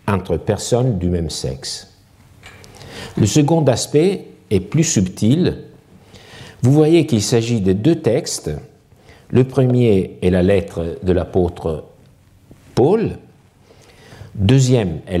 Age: 50-69